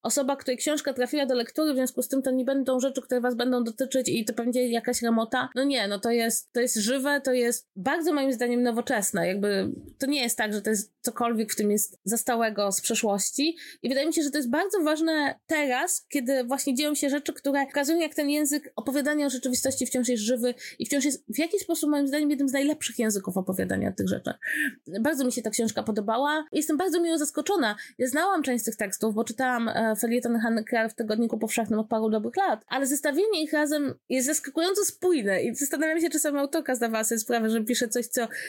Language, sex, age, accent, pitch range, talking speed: Polish, female, 20-39, native, 230-290 Hz, 225 wpm